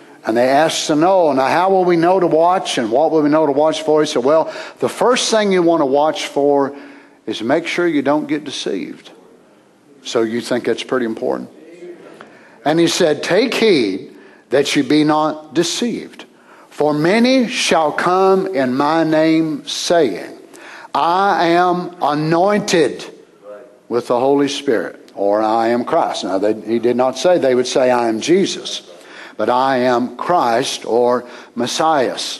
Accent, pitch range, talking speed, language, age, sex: American, 135-190 Hz, 165 wpm, English, 60-79, male